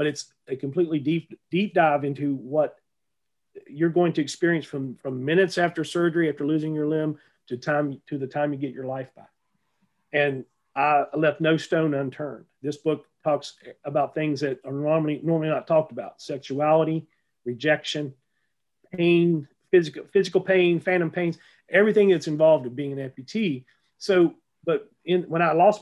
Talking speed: 165 wpm